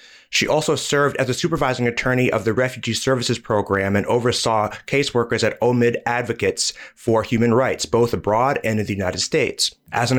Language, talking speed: English, 175 wpm